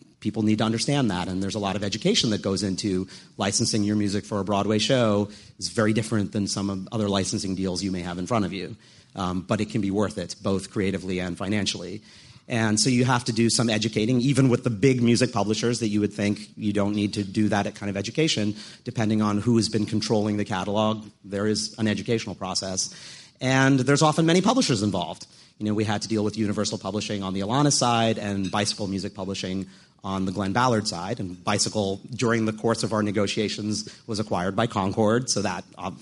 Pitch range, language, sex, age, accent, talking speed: 100-120 Hz, English, male, 40-59, American, 220 wpm